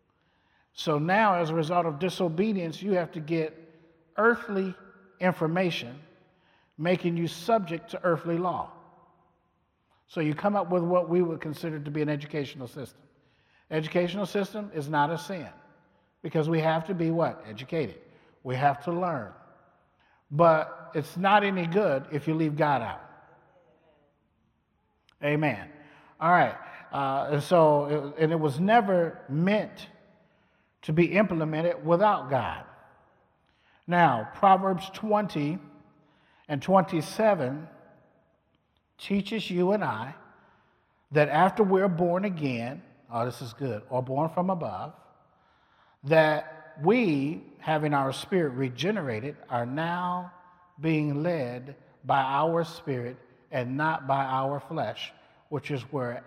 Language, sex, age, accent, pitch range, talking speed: English, male, 50-69, American, 145-180 Hz, 130 wpm